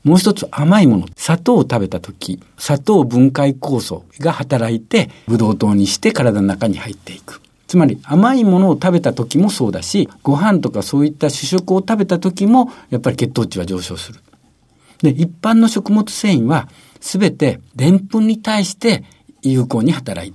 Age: 60-79